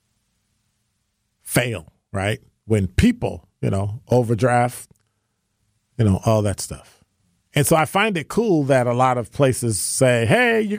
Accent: American